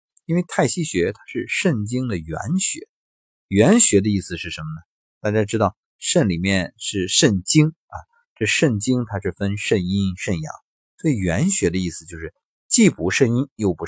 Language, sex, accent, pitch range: Chinese, male, native, 85-125 Hz